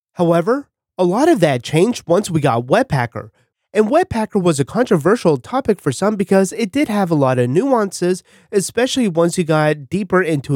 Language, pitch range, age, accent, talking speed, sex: English, 130-200 Hz, 30-49, American, 180 wpm, male